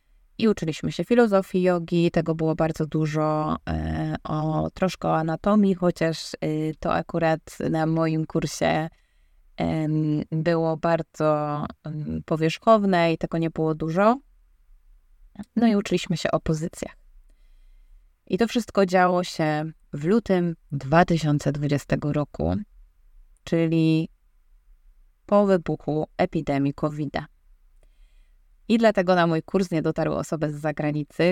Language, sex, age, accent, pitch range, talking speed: Polish, female, 20-39, native, 150-180 Hz, 110 wpm